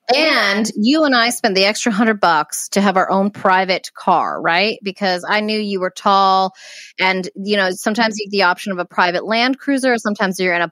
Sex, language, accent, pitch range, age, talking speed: female, English, American, 185-235 Hz, 30-49, 220 wpm